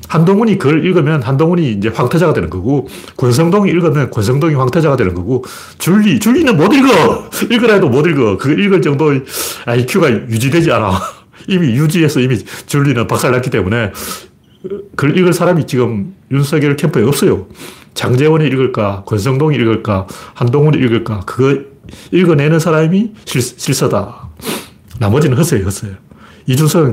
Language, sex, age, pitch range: Korean, male, 40-59, 115-160 Hz